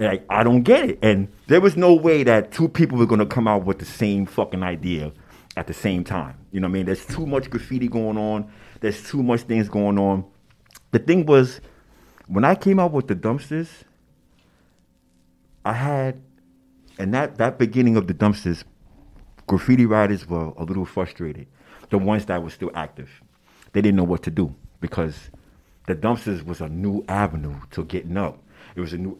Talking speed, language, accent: 195 wpm, English, American